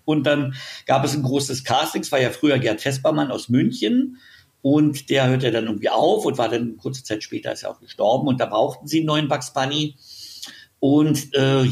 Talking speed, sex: 210 wpm, male